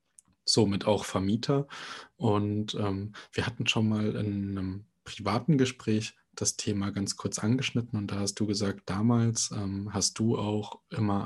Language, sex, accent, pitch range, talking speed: German, male, German, 95-110 Hz, 155 wpm